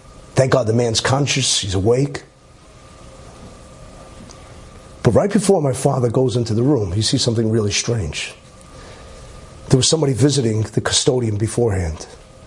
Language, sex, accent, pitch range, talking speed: English, male, American, 120-170 Hz, 135 wpm